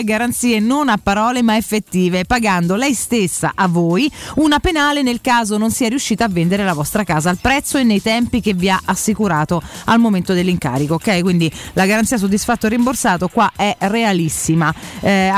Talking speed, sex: 180 wpm, female